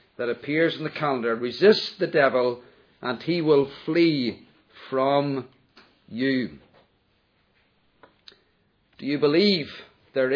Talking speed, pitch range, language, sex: 105 wpm, 140-205 Hz, English, male